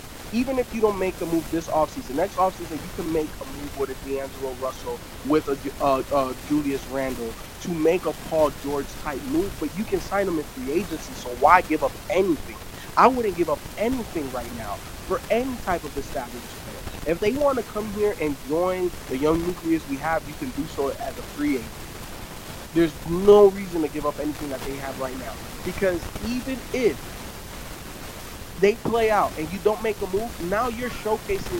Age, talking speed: 20-39, 200 wpm